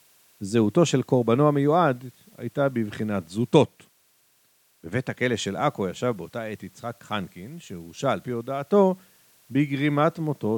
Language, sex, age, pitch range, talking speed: Hebrew, male, 50-69, 105-145 Hz, 125 wpm